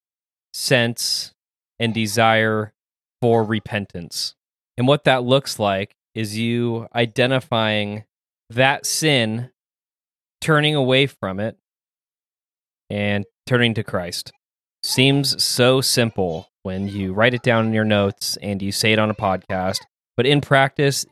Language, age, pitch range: English, 20-39, 105-125 Hz